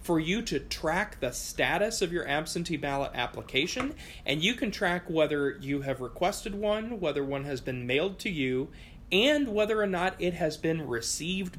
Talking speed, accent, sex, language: 180 wpm, American, male, English